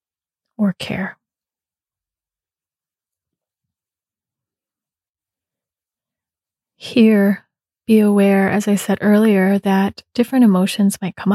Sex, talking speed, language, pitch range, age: female, 75 wpm, English, 190-210 Hz, 30-49